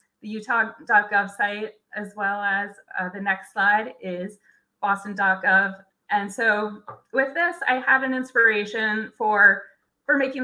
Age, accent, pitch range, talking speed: 20-39, American, 205-255 Hz, 130 wpm